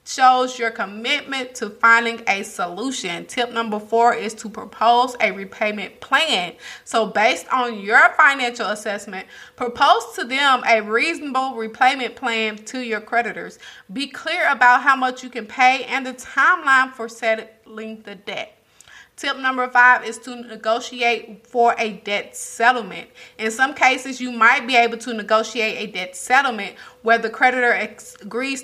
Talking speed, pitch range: 155 wpm, 220-255 Hz